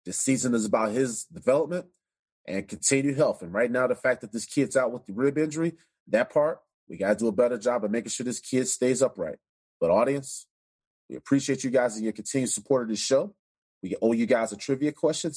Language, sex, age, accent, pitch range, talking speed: English, male, 30-49, American, 110-140 Hz, 225 wpm